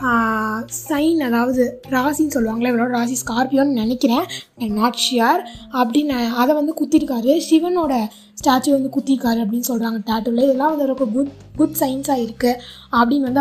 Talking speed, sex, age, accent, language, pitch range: 135 wpm, female, 20-39, native, Tamil, 235-280 Hz